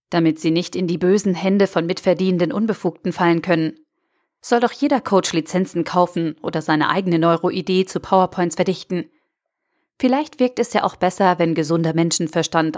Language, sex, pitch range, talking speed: German, female, 170-200 Hz, 160 wpm